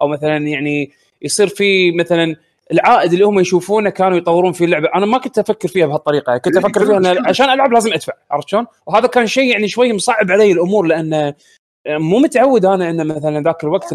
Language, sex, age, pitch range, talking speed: Arabic, male, 20-39, 160-210 Hz, 200 wpm